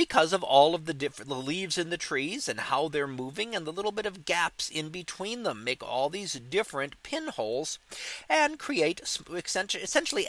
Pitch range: 155-210 Hz